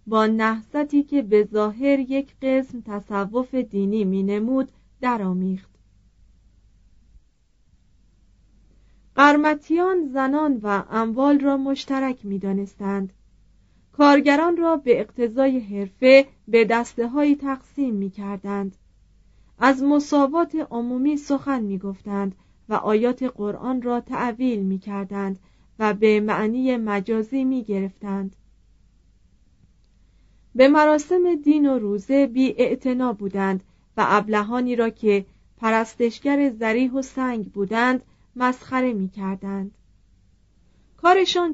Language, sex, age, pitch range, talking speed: Persian, female, 30-49, 200-265 Hz, 100 wpm